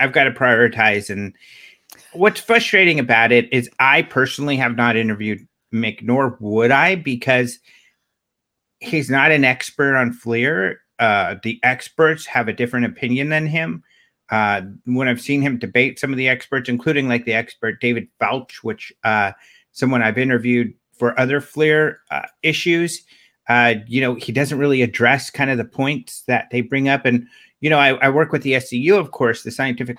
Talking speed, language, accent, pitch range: 180 wpm, English, American, 120-140 Hz